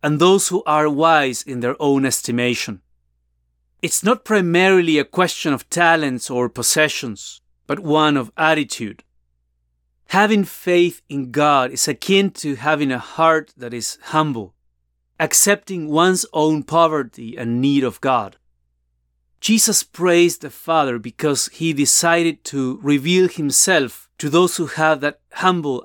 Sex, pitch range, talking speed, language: male, 110-170 Hz, 135 wpm, English